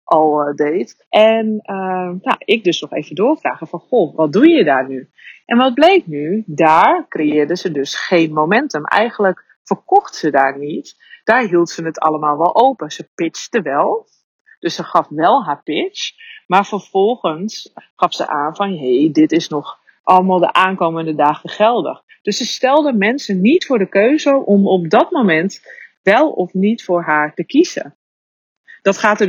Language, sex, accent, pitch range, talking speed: Dutch, female, Dutch, 165-235 Hz, 170 wpm